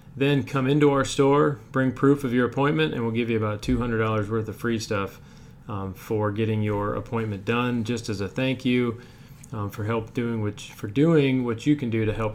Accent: American